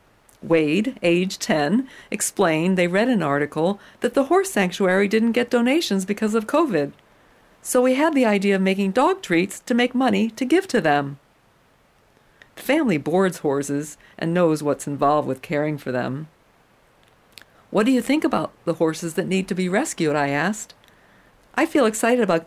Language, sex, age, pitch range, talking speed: English, female, 50-69, 160-245 Hz, 170 wpm